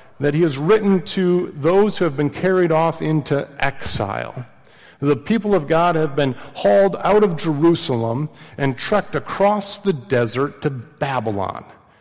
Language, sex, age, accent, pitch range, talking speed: English, male, 50-69, American, 135-180 Hz, 150 wpm